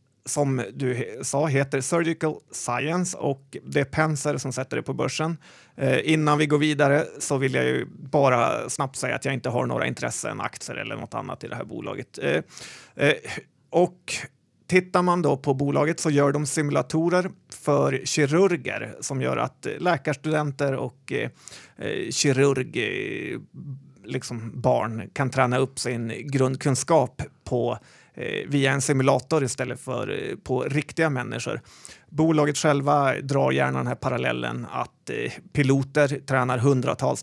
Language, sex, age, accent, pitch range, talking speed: Swedish, male, 30-49, native, 130-150 Hz, 145 wpm